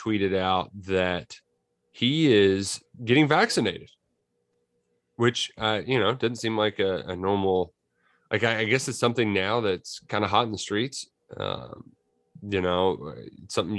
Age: 30-49